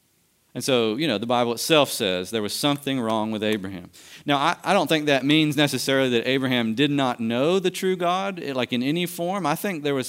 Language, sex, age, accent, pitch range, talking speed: English, male, 40-59, American, 115-155 Hz, 225 wpm